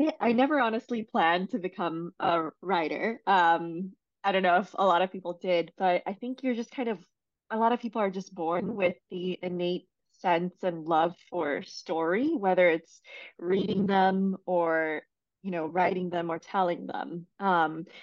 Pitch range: 175-205 Hz